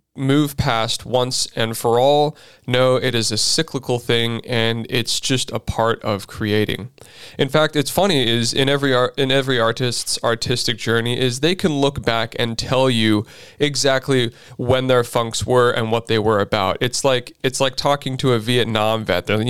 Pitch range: 115-135 Hz